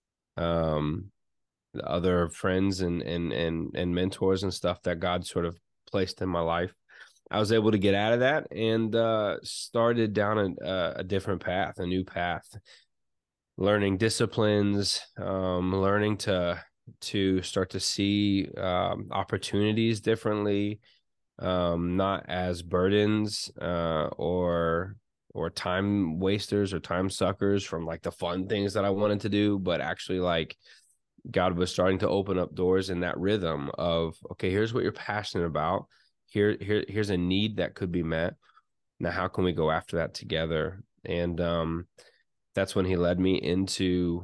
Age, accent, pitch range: 20-39, American, 85-100 Hz